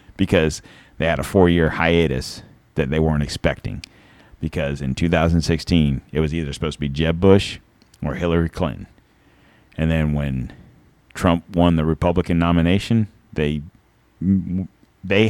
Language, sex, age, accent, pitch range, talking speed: English, male, 40-59, American, 80-100 Hz, 135 wpm